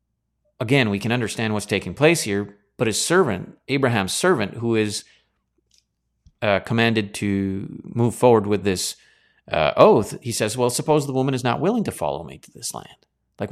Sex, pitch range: male, 95-125 Hz